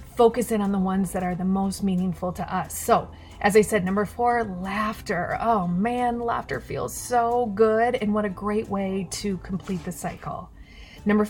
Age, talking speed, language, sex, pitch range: 30-49, 185 wpm, English, female, 185-235 Hz